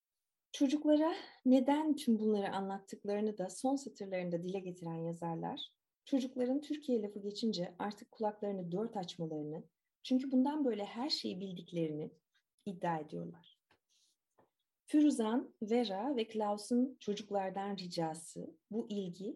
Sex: female